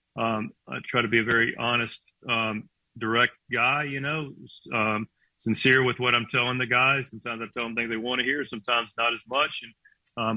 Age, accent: 40-59, American